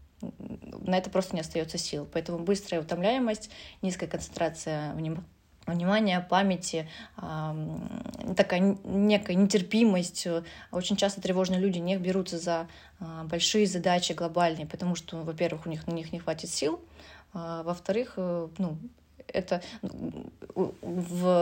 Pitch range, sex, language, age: 165-190 Hz, female, Russian, 20-39